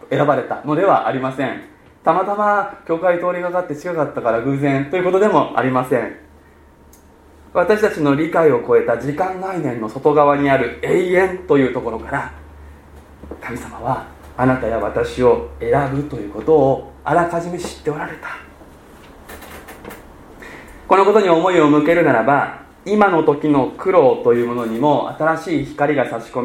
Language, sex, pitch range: Japanese, male, 135-185 Hz